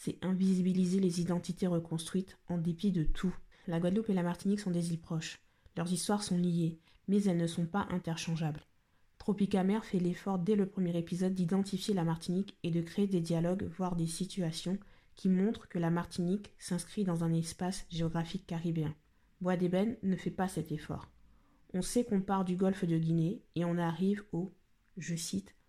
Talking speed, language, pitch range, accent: 185 wpm, French, 165-190 Hz, French